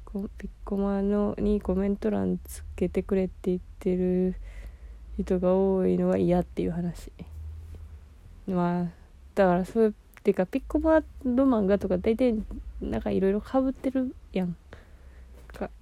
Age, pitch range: 20-39, 165-200 Hz